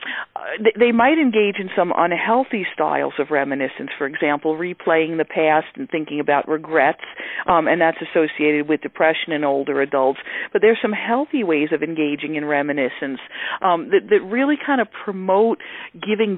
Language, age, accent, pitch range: English, 50-69, American, 155-220 Hz